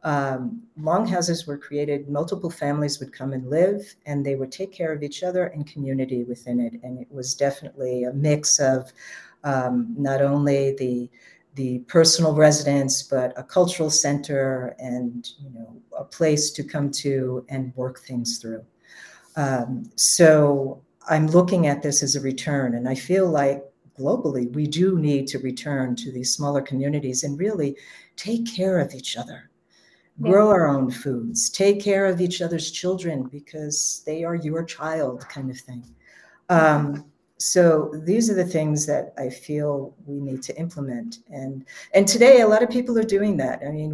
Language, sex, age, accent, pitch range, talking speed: English, female, 50-69, American, 135-165 Hz, 170 wpm